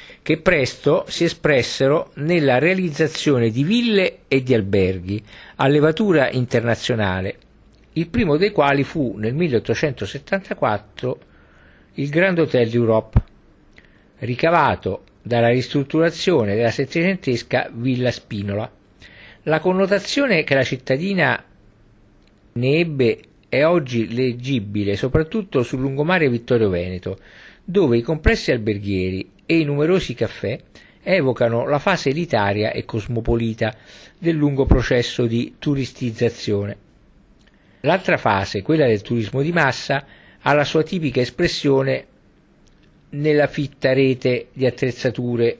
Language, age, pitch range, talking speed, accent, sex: Italian, 50-69, 110-150 Hz, 110 wpm, native, male